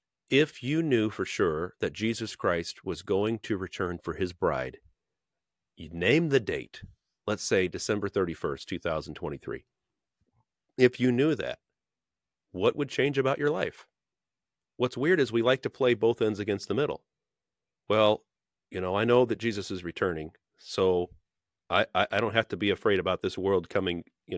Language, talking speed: English, 165 wpm